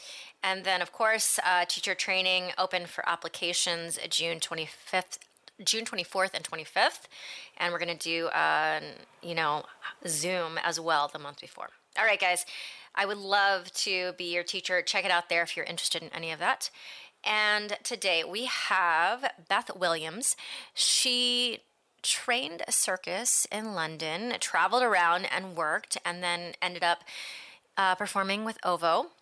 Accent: American